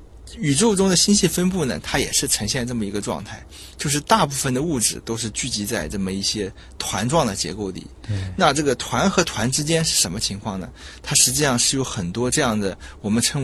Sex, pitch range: male, 105-150 Hz